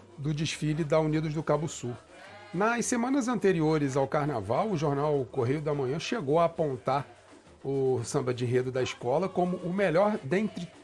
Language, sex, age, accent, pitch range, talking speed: Portuguese, male, 40-59, Brazilian, 150-205 Hz, 165 wpm